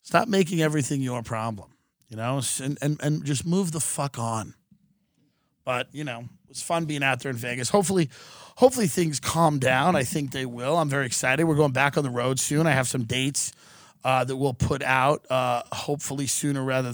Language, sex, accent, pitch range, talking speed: English, male, American, 125-150 Hz, 200 wpm